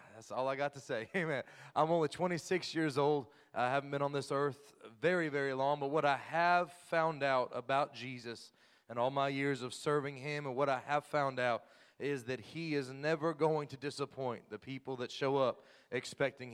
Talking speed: 205 wpm